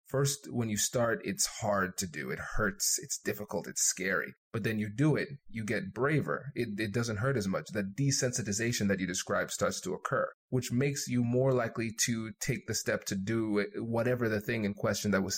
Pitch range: 110-130 Hz